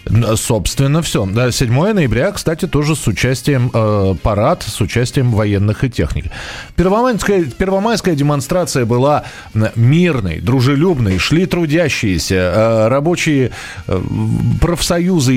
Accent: native